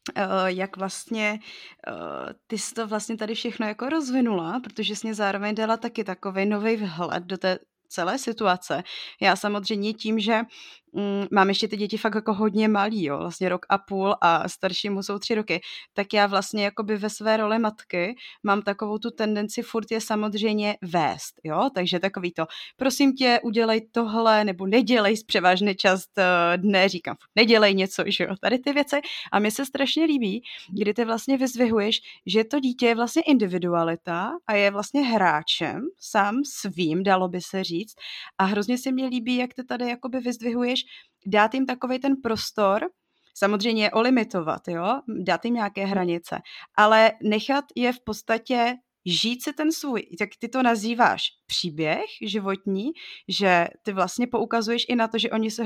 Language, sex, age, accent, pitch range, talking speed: Czech, female, 20-39, native, 195-240 Hz, 175 wpm